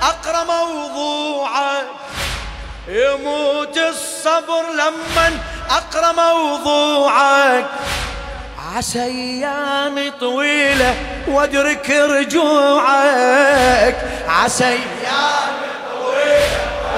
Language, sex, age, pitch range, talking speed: Arabic, male, 30-49, 220-290 Hz, 45 wpm